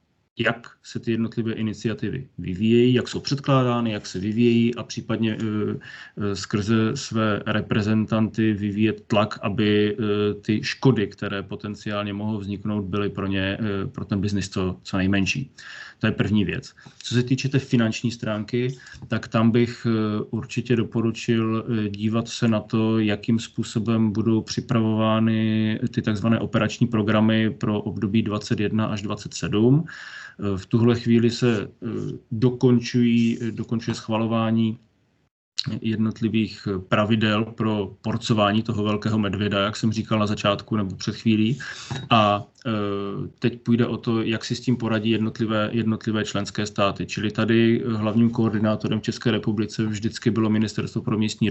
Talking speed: 135 wpm